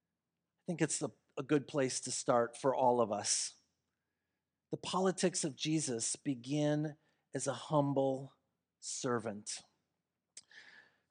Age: 40-59